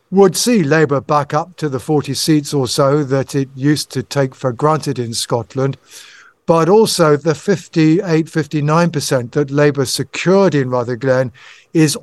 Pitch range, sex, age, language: 135-155 Hz, male, 50-69, English